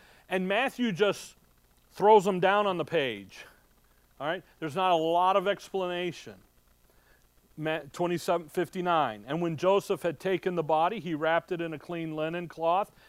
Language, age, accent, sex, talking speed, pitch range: English, 40-59, American, male, 150 wpm, 140-180 Hz